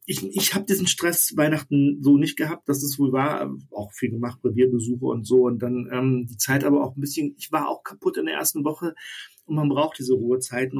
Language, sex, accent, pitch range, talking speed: German, male, German, 130-170 Hz, 230 wpm